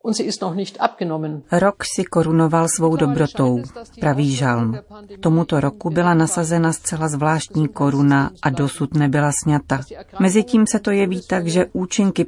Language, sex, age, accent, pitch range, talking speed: Czech, female, 40-59, native, 145-175 Hz, 120 wpm